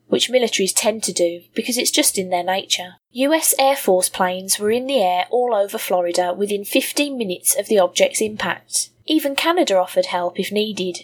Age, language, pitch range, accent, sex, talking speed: 20-39, English, 185-245 Hz, British, female, 190 wpm